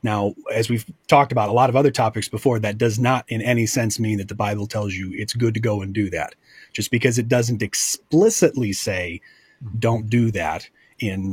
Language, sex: English, male